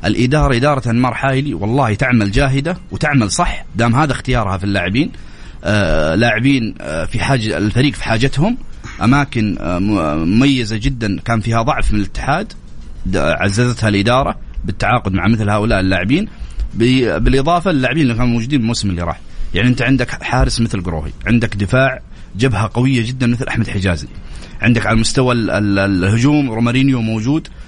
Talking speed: 135 wpm